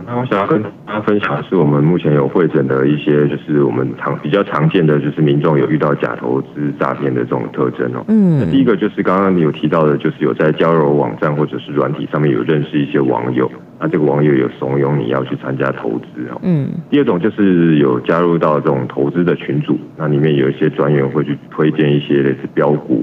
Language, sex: Chinese, male